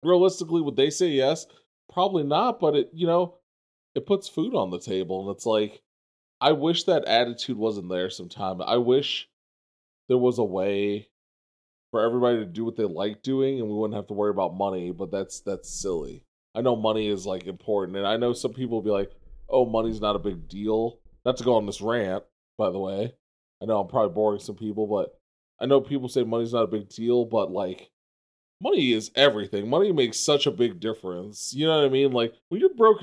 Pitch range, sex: 100-125 Hz, male